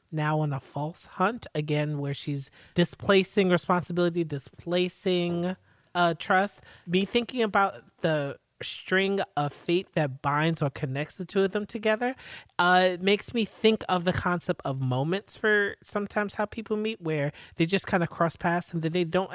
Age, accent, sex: 30-49, American, male